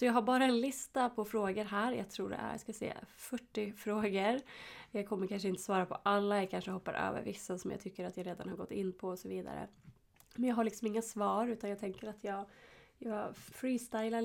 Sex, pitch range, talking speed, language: female, 195-230 Hz, 235 wpm, Swedish